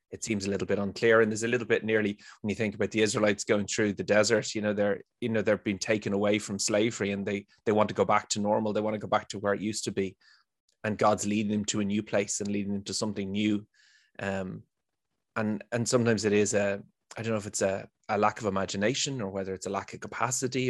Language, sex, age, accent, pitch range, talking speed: English, male, 20-39, Irish, 100-110 Hz, 265 wpm